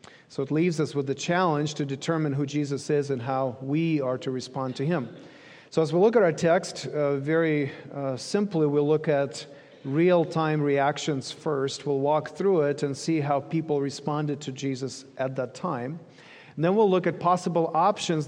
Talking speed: 185 wpm